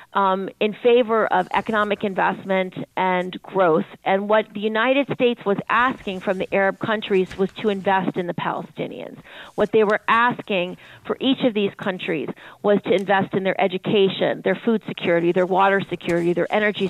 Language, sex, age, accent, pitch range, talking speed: English, female, 40-59, American, 180-210 Hz, 170 wpm